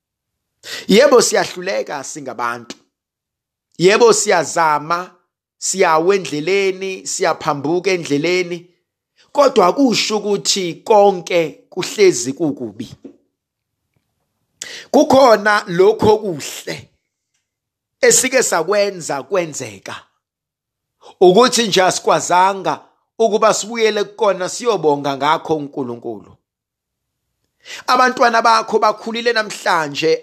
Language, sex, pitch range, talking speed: English, male, 160-225 Hz, 75 wpm